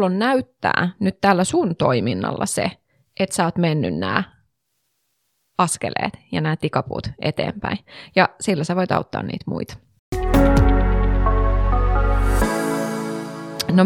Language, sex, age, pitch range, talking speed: Finnish, female, 20-39, 160-190 Hz, 110 wpm